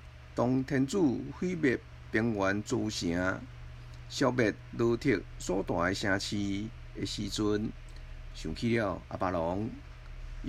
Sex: male